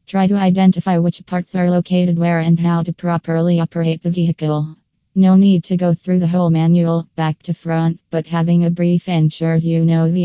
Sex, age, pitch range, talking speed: female, 20-39, 165-180 Hz, 200 wpm